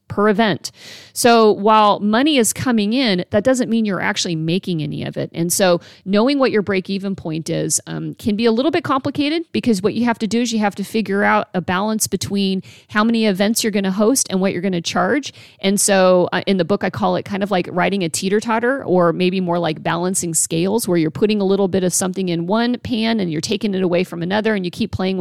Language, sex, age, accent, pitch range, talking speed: English, female, 40-59, American, 170-220 Hz, 245 wpm